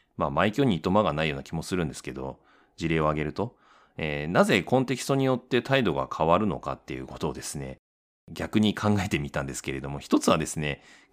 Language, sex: Japanese, male